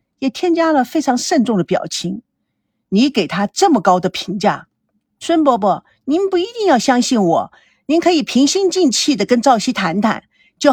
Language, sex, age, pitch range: Chinese, female, 50-69, 205-315 Hz